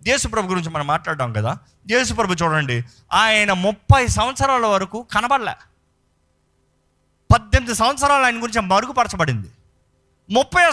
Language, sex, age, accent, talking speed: Telugu, male, 30-49, native, 100 wpm